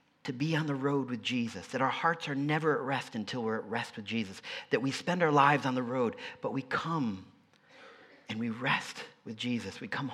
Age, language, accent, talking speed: 40-59, English, American, 225 wpm